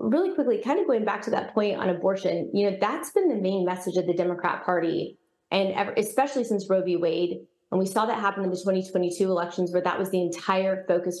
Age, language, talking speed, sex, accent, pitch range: 20-39, English, 230 wpm, female, American, 180-195 Hz